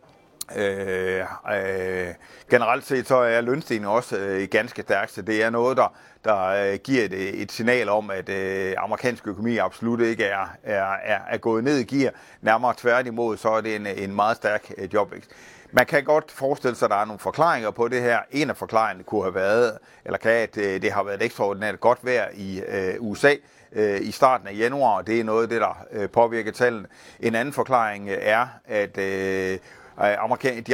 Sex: male